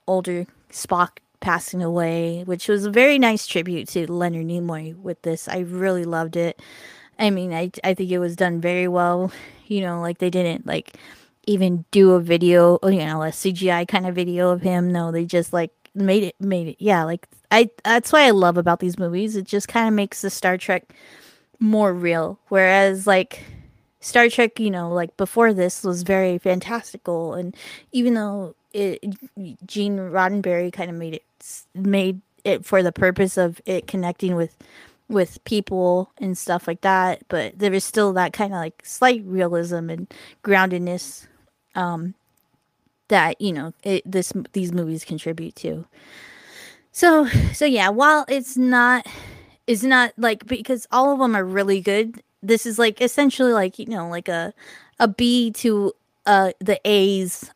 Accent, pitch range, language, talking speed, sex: American, 175-210 Hz, English, 175 wpm, female